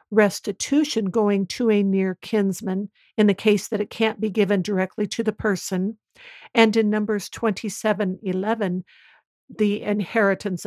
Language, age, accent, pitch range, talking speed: English, 60-79, American, 180-215 Hz, 135 wpm